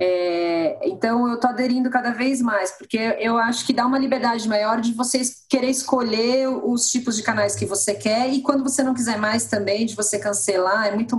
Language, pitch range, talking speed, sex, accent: Portuguese, 190-250 Hz, 210 wpm, female, Brazilian